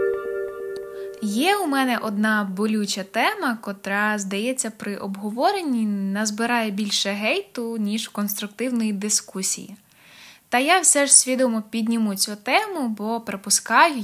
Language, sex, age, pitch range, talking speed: Ukrainian, female, 20-39, 200-245 Hz, 110 wpm